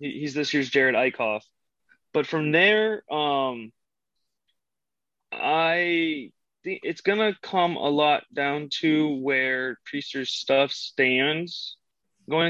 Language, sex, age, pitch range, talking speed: English, male, 20-39, 125-155 Hz, 110 wpm